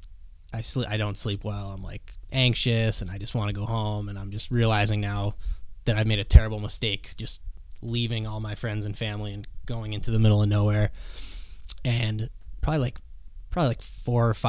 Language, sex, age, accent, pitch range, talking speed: English, male, 10-29, American, 100-115 Hz, 195 wpm